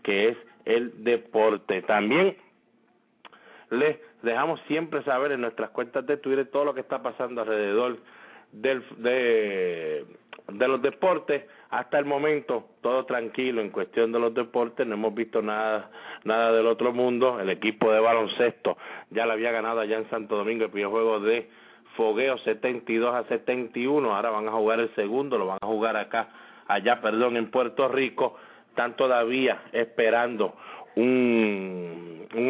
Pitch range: 110-125 Hz